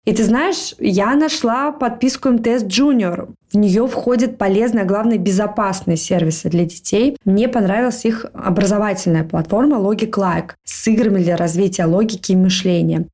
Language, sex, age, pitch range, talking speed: Russian, female, 20-39, 185-220 Hz, 145 wpm